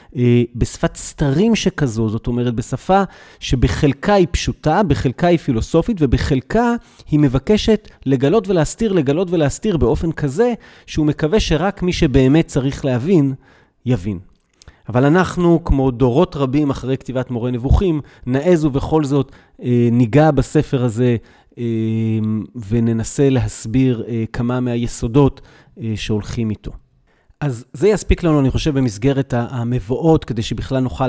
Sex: male